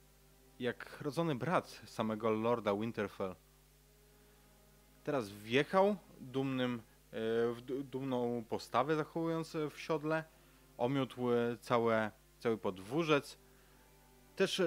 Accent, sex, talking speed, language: native, male, 85 wpm, Polish